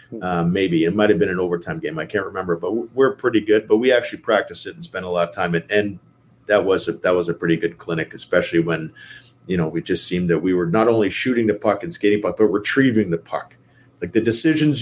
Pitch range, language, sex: 95-120 Hz, English, male